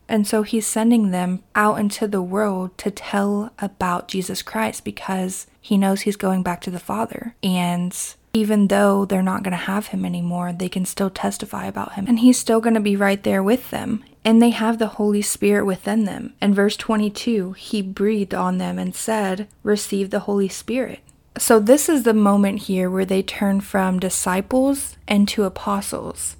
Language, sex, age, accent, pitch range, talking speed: English, female, 20-39, American, 195-225 Hz, 190 wpm